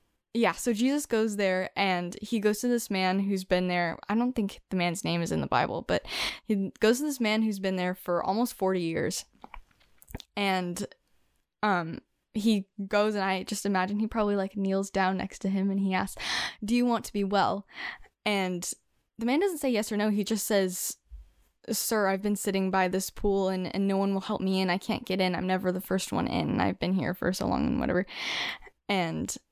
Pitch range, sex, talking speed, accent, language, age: 185-210 Hz, female, 220 wpm, American, English, 10-29